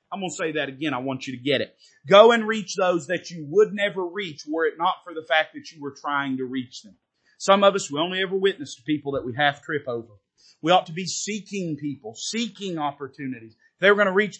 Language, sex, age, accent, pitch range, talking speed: English, male, 40-59, American, 150-210 Hz, 255 wpm